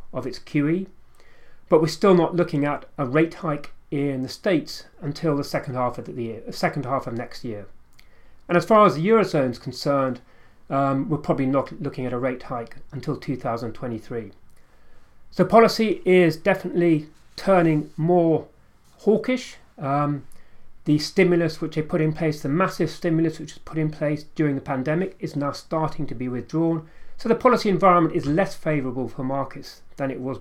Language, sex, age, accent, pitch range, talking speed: English, male, 40-59, British, 135-170 Hz, 180 wpm